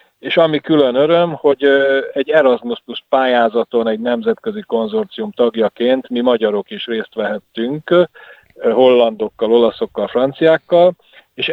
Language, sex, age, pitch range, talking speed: Hungarian, male, 40-59, 115-140 Hz, 115 wpm